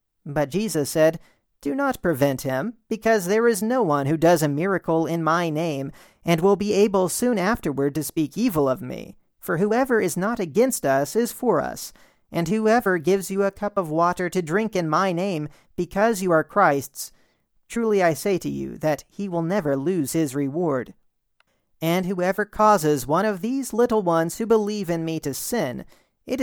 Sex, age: male, 40-59